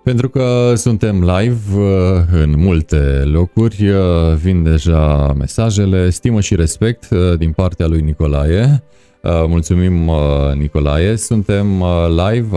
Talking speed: 100 wpm